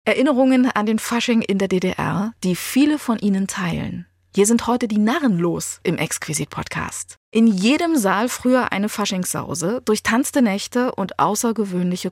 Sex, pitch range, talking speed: female, 170-240 Hz, 155 wpm